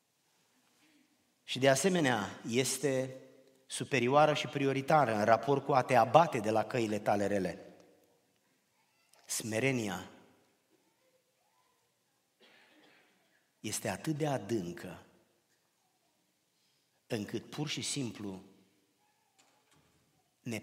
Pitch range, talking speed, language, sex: 100-125 Hz, 80 wpm, Romanian, male